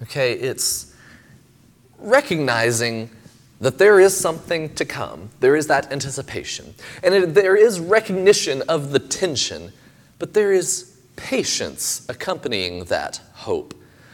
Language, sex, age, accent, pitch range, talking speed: English, male, 30-49, American, 120-165 Hz, 115 wpm